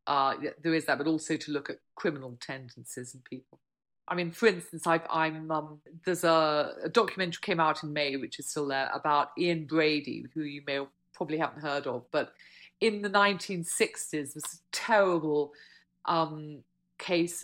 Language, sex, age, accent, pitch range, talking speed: English, female, 40-59, British, 140-165 Hz, 195 wpm